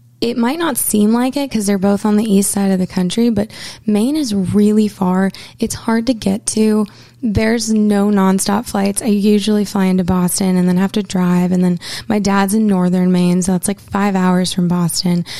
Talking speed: 210 wpm